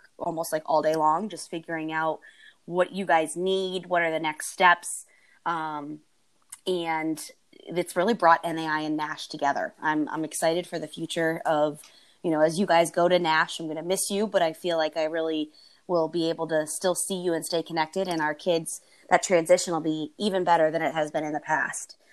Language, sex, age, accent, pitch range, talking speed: English, female, 20-39, American, 155-185 Hz, 210 wpm